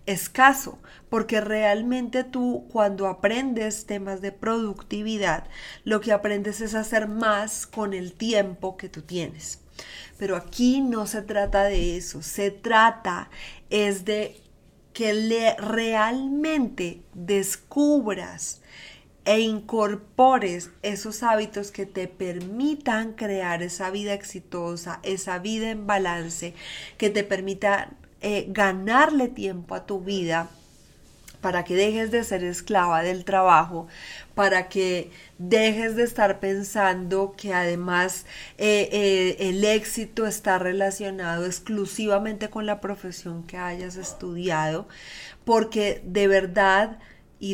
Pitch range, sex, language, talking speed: 185-215 Hz, female, Spanish, 115 wpm